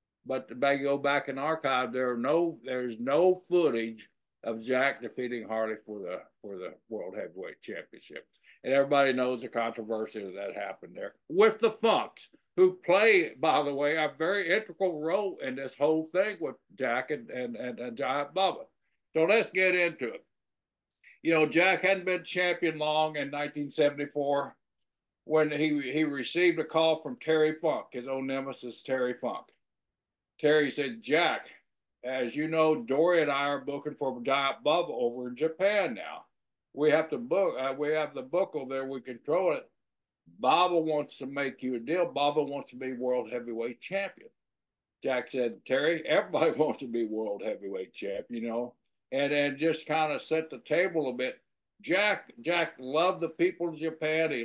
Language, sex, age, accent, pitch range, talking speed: English, male, 60-79, American, 125-165 Hz, 175 wpm